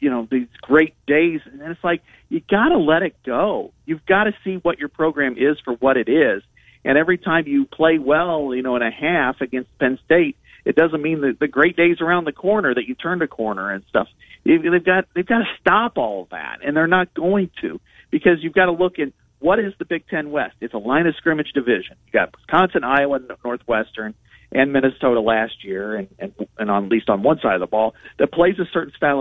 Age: 50-69